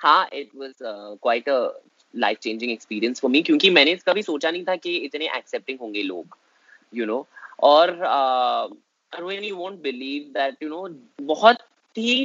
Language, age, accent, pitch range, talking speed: Hindi, 20-39, native, 125-160 Hz, 150 wpm